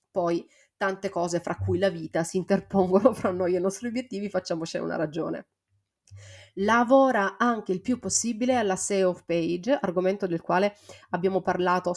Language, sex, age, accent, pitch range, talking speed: Italian, female, 30-49, native, 175-195 Hz, 155 wpm